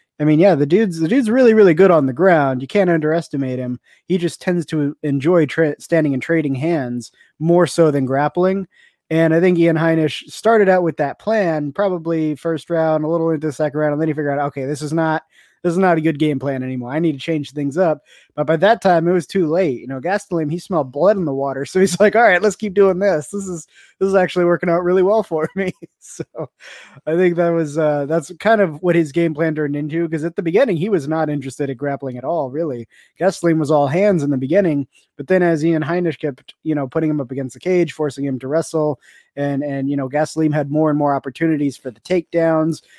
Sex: male